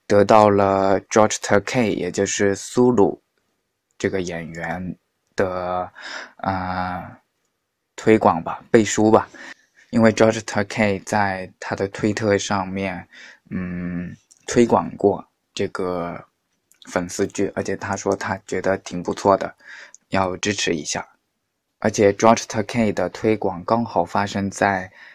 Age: 20-39